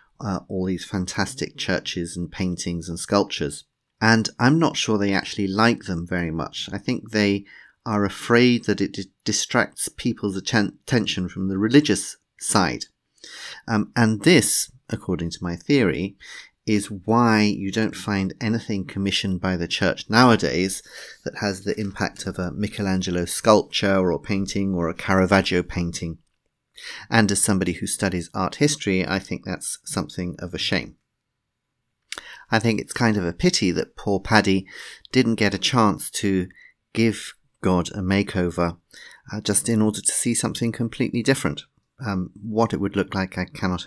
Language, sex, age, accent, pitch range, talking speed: English, male, 40-59, British, 90-115 Hz, 155 wpm